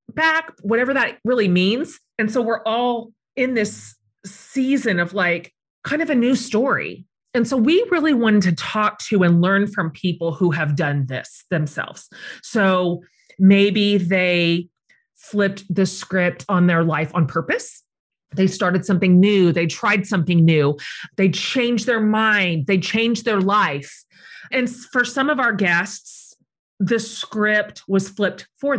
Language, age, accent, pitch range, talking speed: English, 30-49, American, 175-230 Hz, 155 wpm